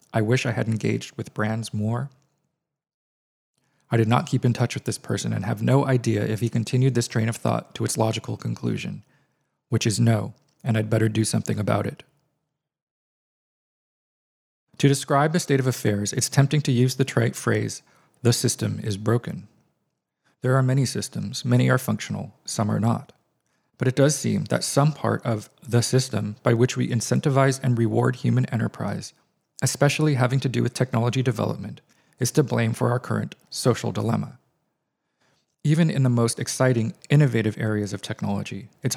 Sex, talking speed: male, 170 wpm